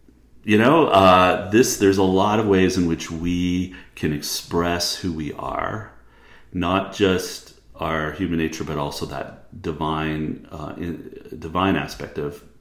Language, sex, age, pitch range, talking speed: English, male, 40-59, 80-95 Hz, 150 wpm